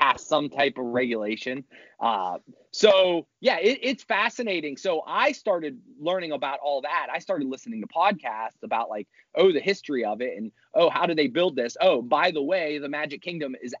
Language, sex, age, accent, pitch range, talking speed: English, male, 30-49, American, 125-165 Hz, 190 wpm